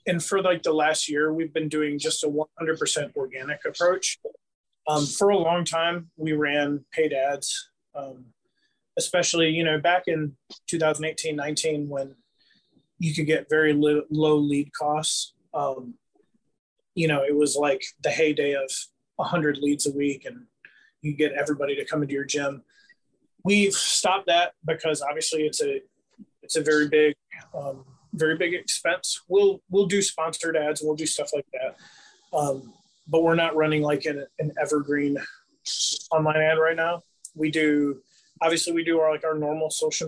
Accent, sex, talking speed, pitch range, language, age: American, male, 165 wpm, 150-170 Hz, English, 30-49